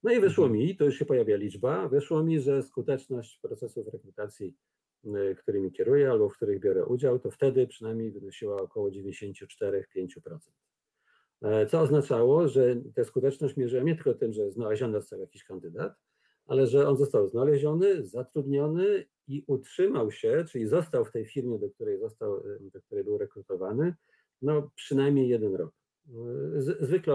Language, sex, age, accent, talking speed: Polish, male, 50-69, native, 150 wpm